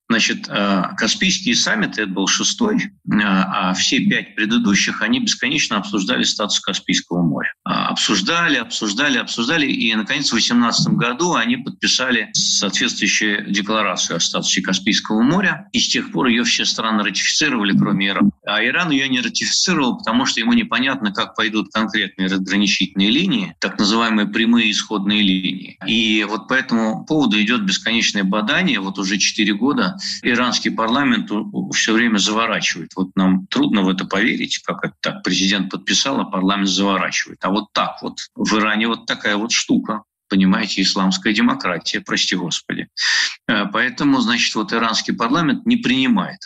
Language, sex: Russian, male